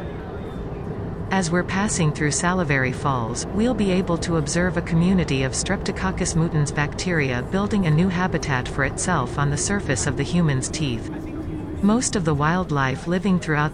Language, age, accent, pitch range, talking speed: English, 40-59, American, 145-180 Hz, 155 wpm